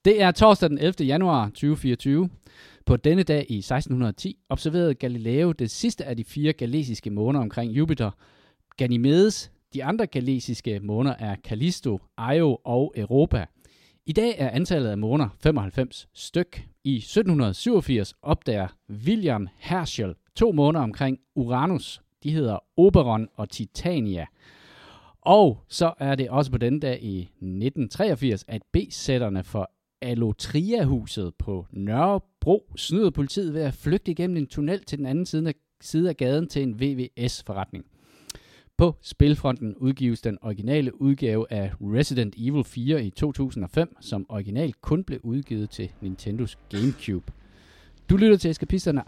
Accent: native